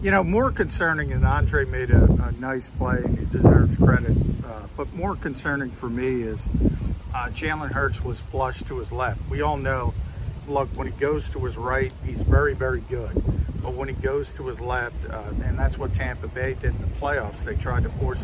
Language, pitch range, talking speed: English, 90-125 Hz, 215 wpm